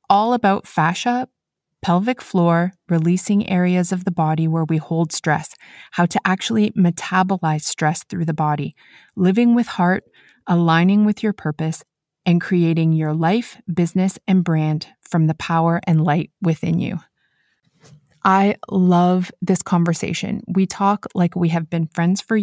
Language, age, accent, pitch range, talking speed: English, 30-49, American, 165-195 Hz, 145 wpm